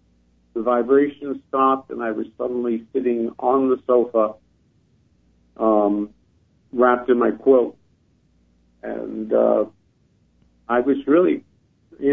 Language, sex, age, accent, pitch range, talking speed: English, male, 50-69, American, 115-135 Hz, 110 wpm